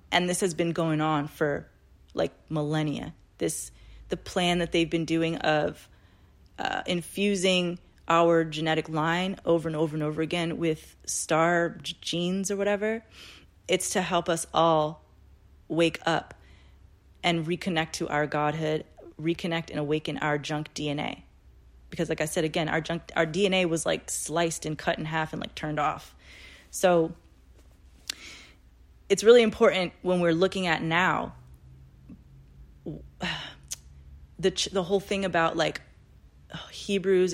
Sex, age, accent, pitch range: female, 20-39, American, 145-180 Hz